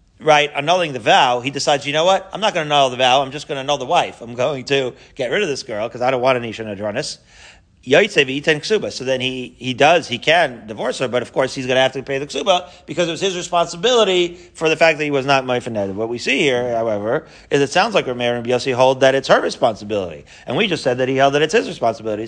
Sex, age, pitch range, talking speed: male, 40-59, 130-160 Hz, 270 wpm